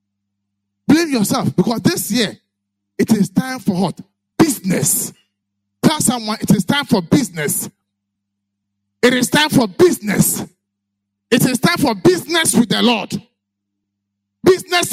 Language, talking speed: English, 130 wpm